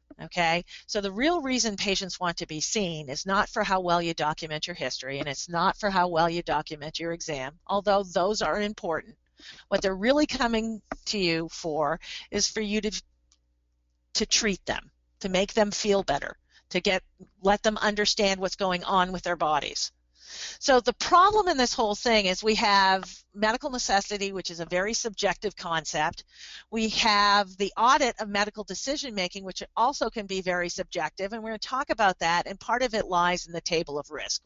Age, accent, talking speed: 50-69, American, 195 wpm